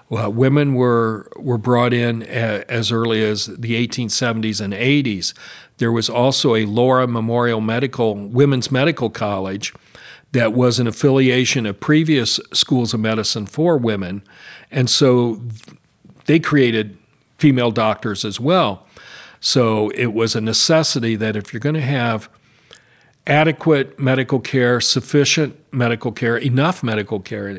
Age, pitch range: 40-59, 110-140 Hz